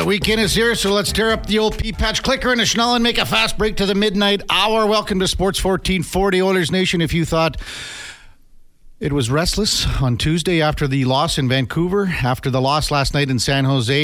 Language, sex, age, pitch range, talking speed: English, male, 50-69, 145-185 Hz, 215 wpm